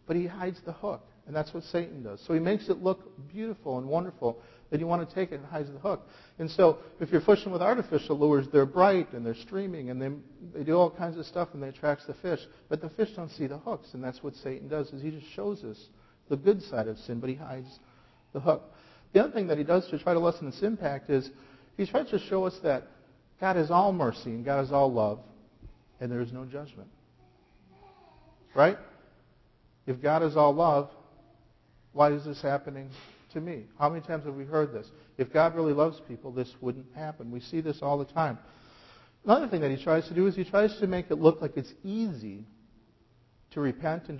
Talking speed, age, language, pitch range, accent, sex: 225 wpm, 50-69, English, 125-170 Hz, American, male